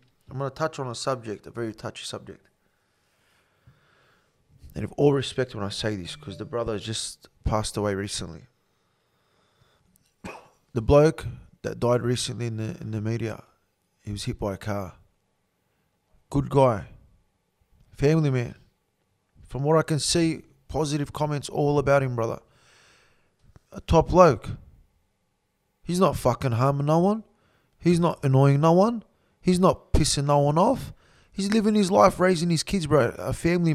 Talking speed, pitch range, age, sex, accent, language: 155 wpm, 120-175 Hz, 20-39, male, Australian, English